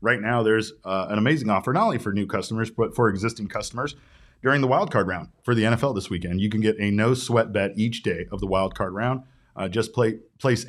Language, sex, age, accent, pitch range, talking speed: English, male, 30-49, American, 95-120 Hz, 230 wpm